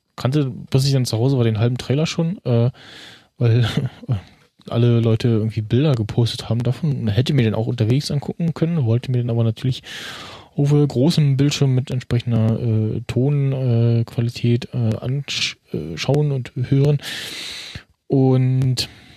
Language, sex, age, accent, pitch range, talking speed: German, male, 20-39, German, 115-135 Hz, 145 wpm